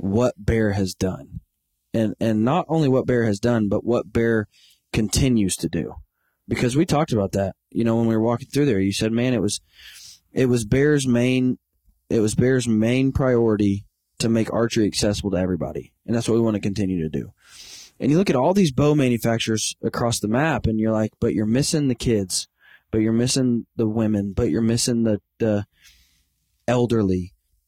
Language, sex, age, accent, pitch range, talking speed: English, male, 20-39, American, 105-130 Hz, 195 wpm